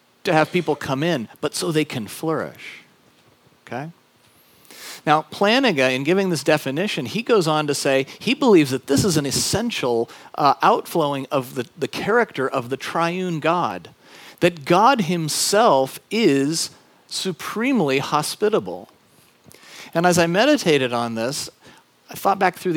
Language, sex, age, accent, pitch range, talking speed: English, male, 40-59, American, 130-175 Hz, 145 wpm